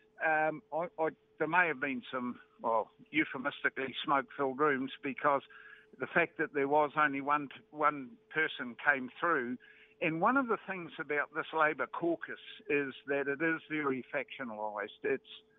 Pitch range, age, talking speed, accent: 140-170 Hz, 60-79, 155 wpm, British